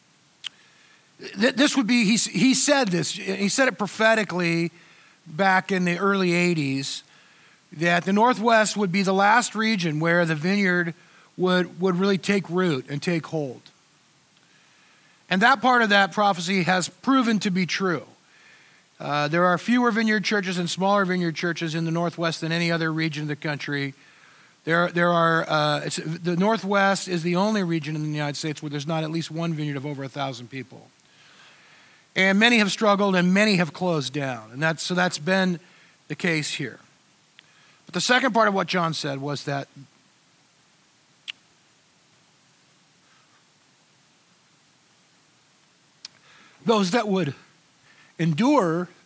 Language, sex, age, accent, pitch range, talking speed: English, male, 50-69, American, 155-195 Hz, 145 wpm